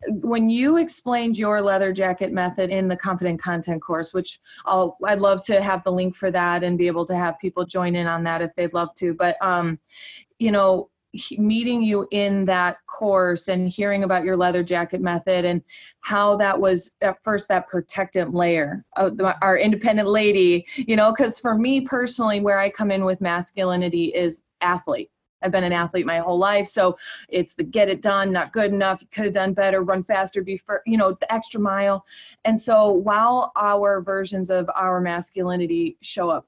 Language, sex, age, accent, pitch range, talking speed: English, female, 20-39, American, 180-210 Hz, 195 wpm